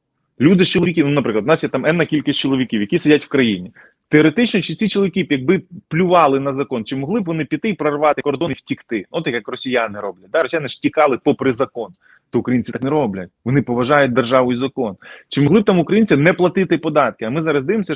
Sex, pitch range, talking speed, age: male, 140-210 Hz, 215 wpm, 20-39